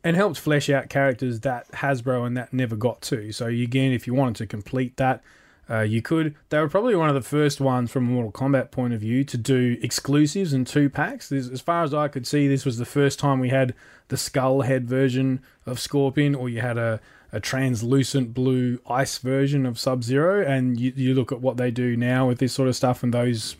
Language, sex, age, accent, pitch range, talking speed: English, male, 20-39, Australian, 120-140 Hz, 230 wpm